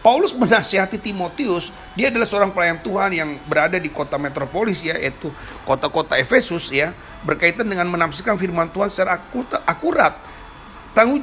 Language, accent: Indonesian, native